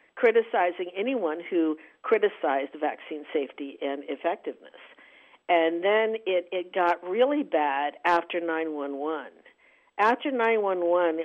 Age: 60-79